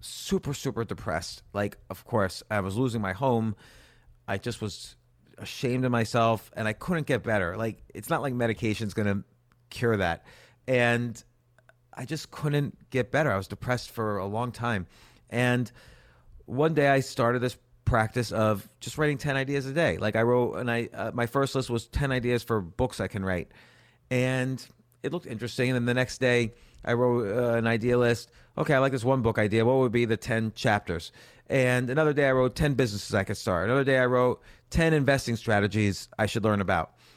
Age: 30-49